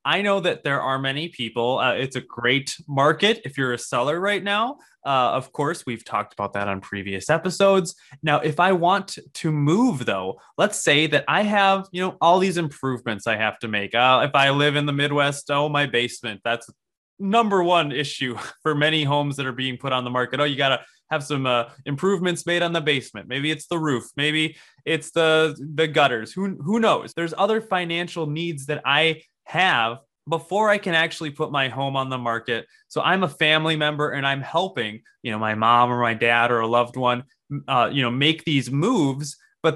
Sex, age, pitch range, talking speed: male, 20-39, 130-165 Hz, 210 wpm